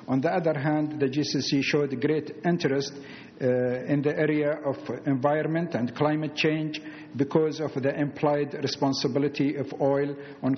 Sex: male